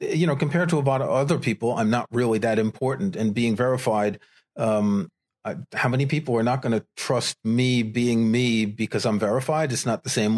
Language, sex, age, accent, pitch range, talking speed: English, male, 40-59, American, 120-165 Hz, 210 wpm